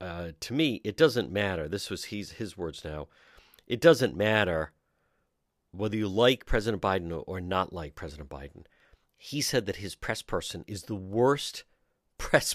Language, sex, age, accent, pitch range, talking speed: English, male, 50-69, American, 100-135 Hz, 165 wpm